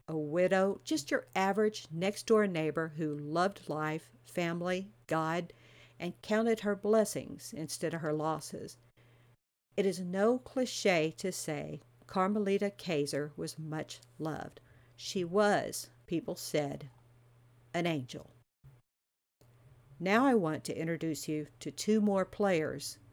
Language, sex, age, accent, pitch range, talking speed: English, female, 50-69, American, 140-190 Hz, 120 wpm